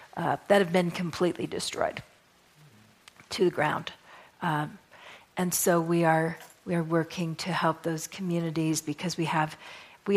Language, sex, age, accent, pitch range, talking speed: English, female, 50-69, American, 165-195 Hz, 150 wpm